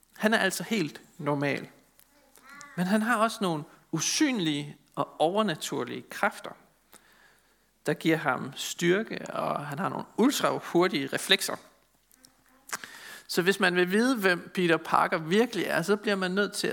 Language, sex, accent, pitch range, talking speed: Danish, male, native, 155-215 Hz, 140 wpm